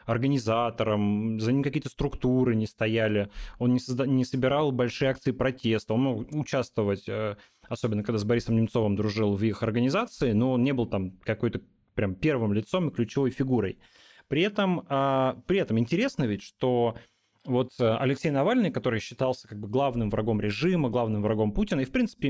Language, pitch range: Russian, 110-140 Hz